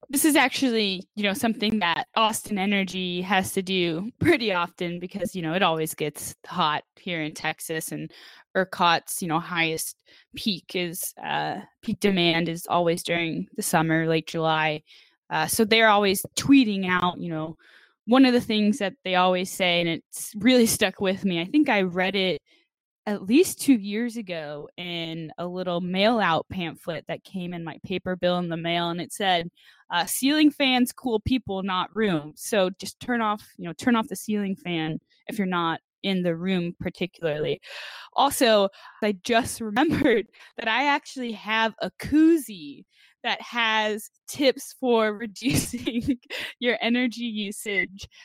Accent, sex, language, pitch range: American, female, English, 175-220 Hz